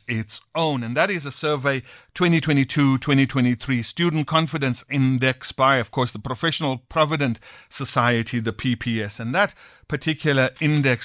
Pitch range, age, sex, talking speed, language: 125-160 Hz, 50-69, male, 130 wpm, English